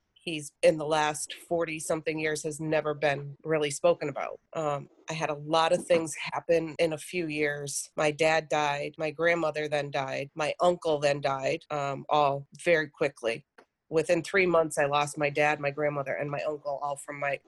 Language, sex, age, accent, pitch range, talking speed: English, female, 30-49, American, 145-165 Hz, 185 wpm